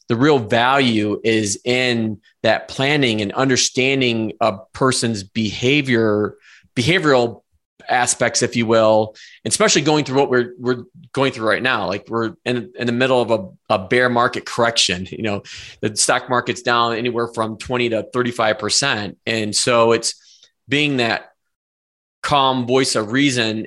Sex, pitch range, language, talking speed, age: male, 110-135 Hz, English, 150 wpm, 20-39